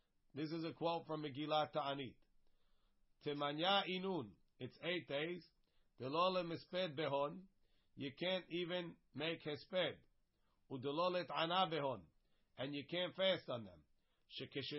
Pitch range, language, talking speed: 140-175 Hz, English, 120 wpm